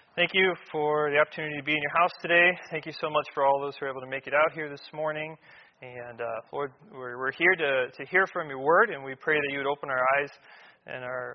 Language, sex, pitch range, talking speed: English, male, 135-165 Hz, 270 wpm